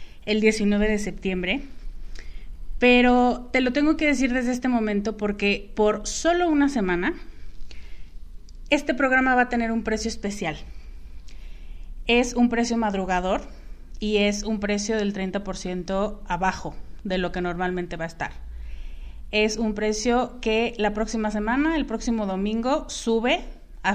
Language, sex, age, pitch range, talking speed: Spanish, female, 30-49, 190-225 Hz, 140 wpm